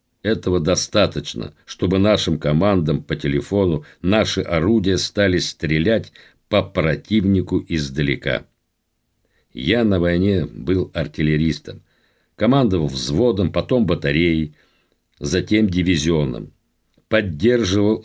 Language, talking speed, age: Russian, 85 wpm, 50-69